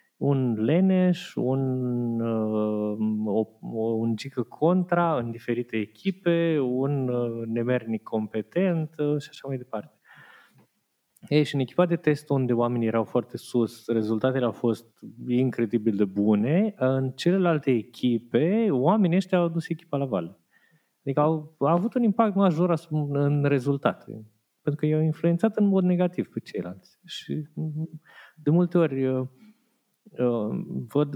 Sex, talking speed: male, 135 wpm